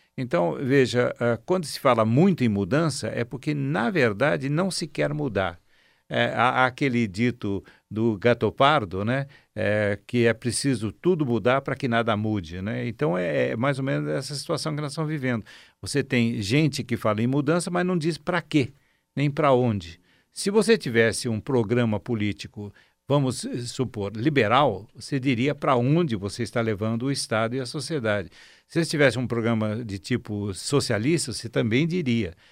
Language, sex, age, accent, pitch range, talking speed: Portuguese, male, 60-79, Brazilian, 110-145 Hz, 175 wpm